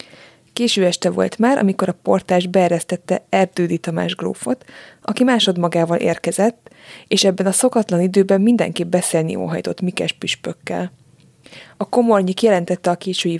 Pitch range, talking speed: 175-220 Hz, 130 wpm